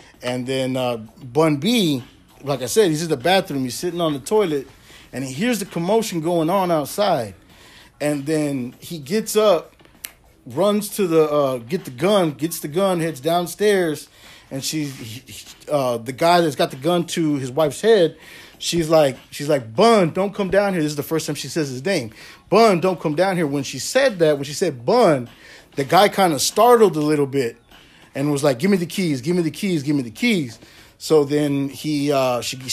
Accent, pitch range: American, 140-180 Hz